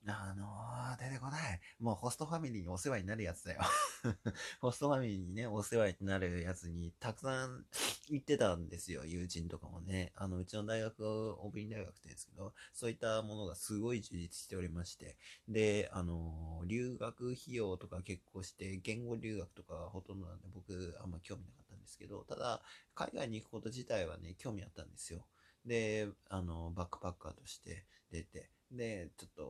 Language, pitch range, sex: Japanese, 90-110 Hz, male